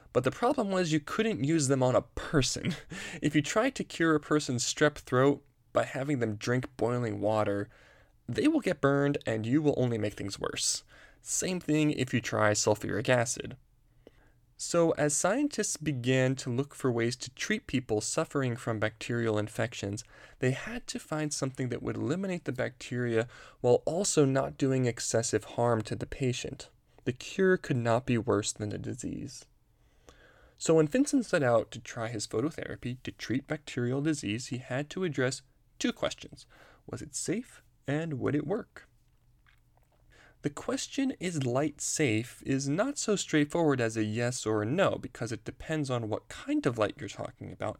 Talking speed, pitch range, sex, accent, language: 175 wpm, 120-155 Hz, male, American, English